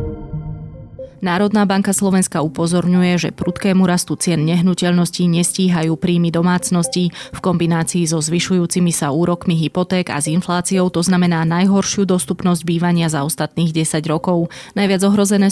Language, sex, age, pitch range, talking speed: Slovak, female, 20-39, 160-180 Hz, 130 wpm